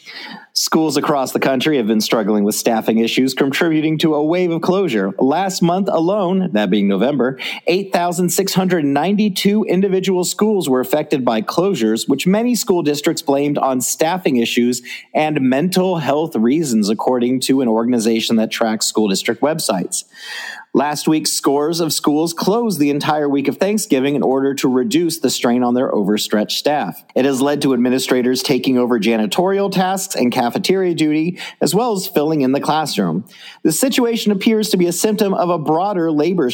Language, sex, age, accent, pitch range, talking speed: English, male, 40-59, American, 130-185 Hz, 165 wpm